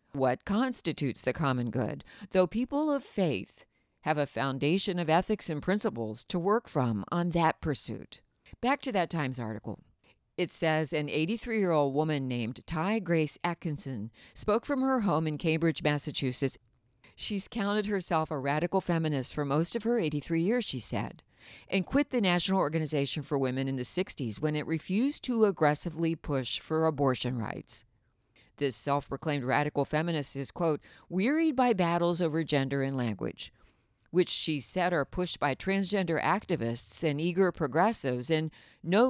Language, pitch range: English, 135-190 Hz